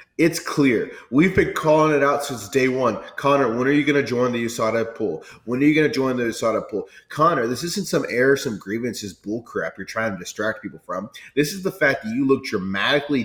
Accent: American